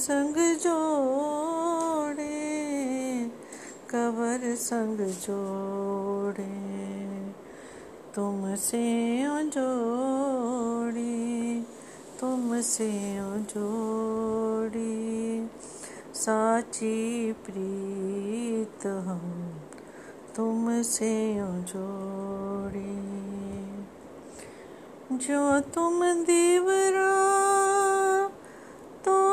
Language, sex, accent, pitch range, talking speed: Hindi, female, native, 205-330 Hz, 45 wpm